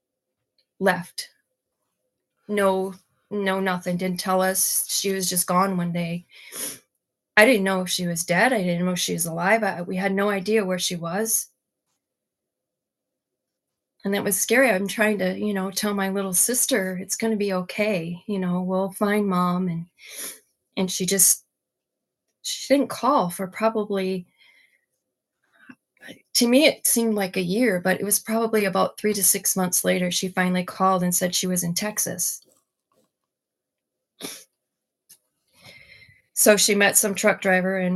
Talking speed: 160 wpm